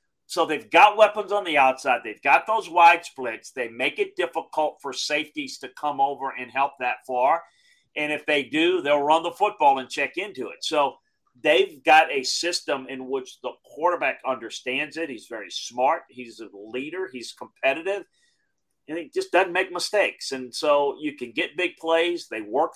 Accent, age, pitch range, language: American, 40-59, 130-185 Hz, English